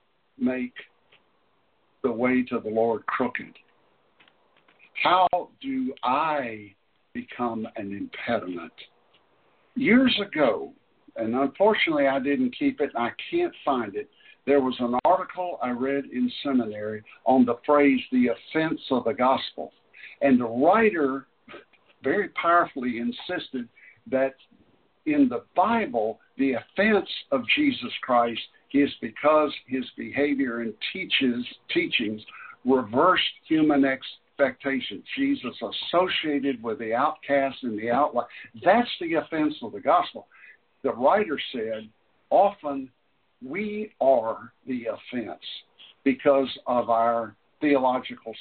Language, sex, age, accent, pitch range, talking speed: English, male, 60-79, American, 120-175 Hz, 115 wpm